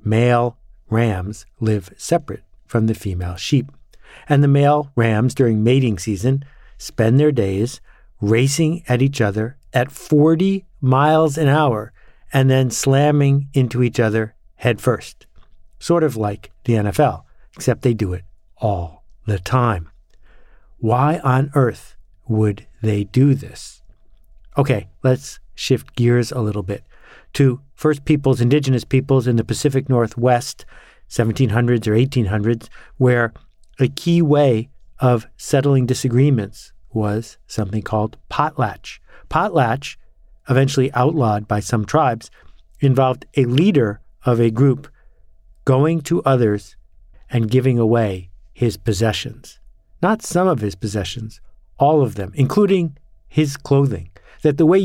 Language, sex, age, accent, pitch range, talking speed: English, male, 50-69, American, 105-140 Hz, 130 wpm